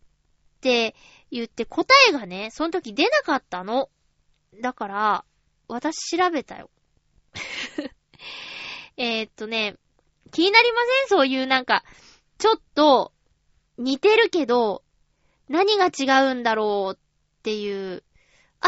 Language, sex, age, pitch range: Japanese, female, 20-39, 215-360 Hz